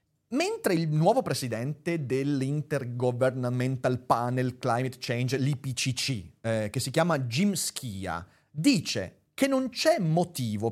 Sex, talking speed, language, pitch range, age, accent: male, 105 wpm, Italian, 120-160 Hz, 30-49, native